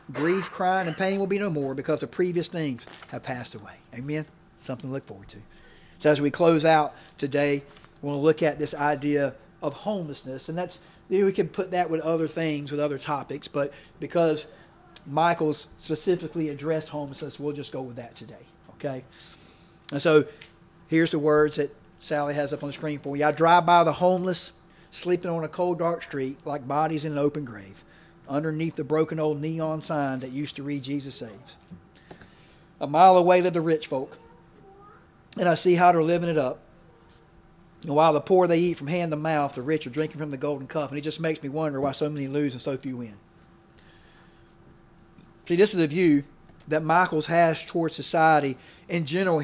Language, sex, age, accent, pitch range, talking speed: English, male, 40-59, American, 145-170 Hz, 200 wpm